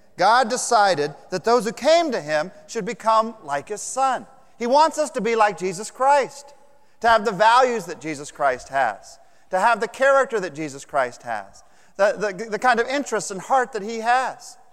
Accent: American